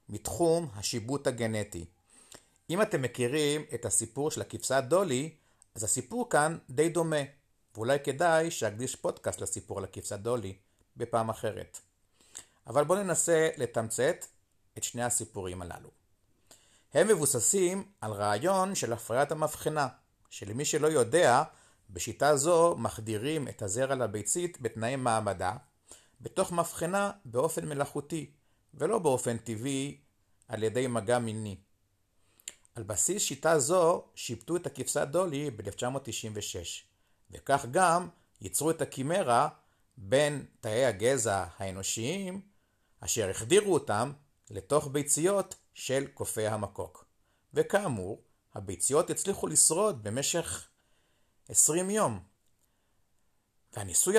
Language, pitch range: Hebrew, 105-160 Hz